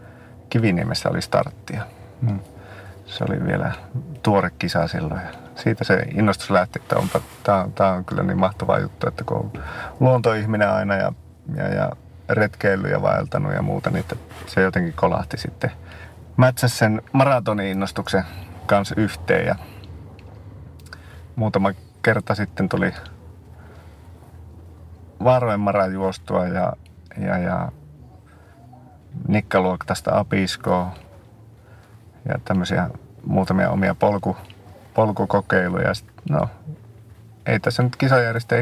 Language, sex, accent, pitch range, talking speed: Finnish, male, native, 95-115 Hz, 105 wpm